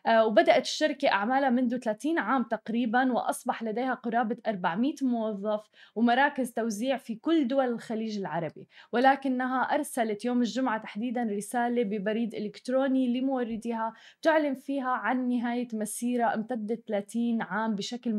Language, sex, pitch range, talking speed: Arabic, female, 215-255 Hz, 120 wpm